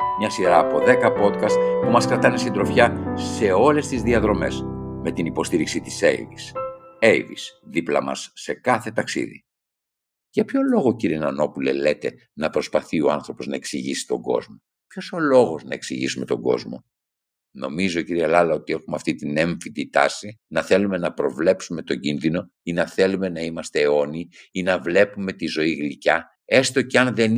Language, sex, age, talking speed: Greek, male, 60-79, 165 wpm